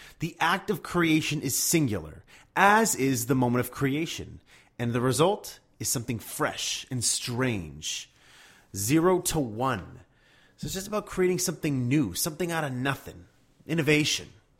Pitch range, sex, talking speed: 115-145 Hz, male, 145 wpm